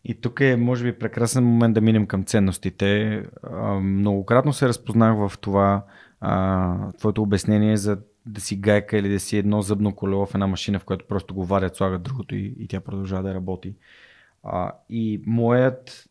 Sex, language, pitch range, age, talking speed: male, Bulgarian, 95-110 Hz, 20-39, 170 wpm